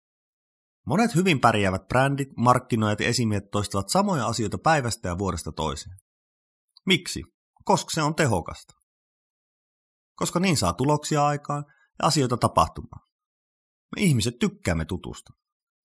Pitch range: 95-155 Hz